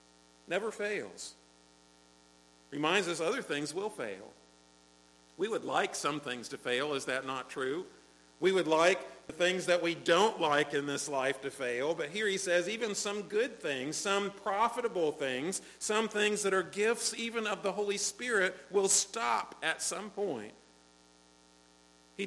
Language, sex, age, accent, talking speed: English, male, 50-69, American, 160 wpm